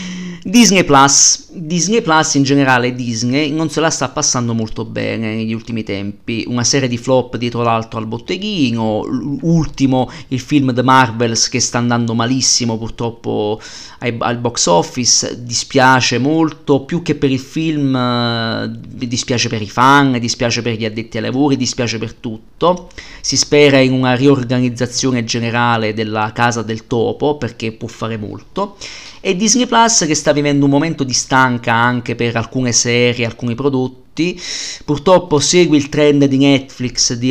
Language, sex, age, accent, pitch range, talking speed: Italian, male, 40-59, native, 115-145 Hz, 155 wpm